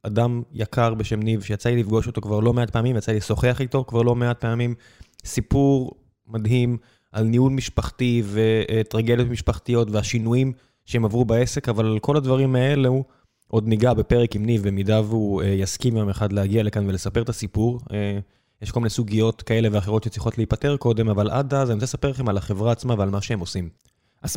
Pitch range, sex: 105-125 Hz, male